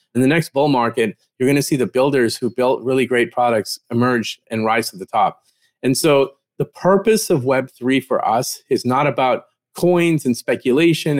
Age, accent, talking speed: 30-49, American, 195 wpm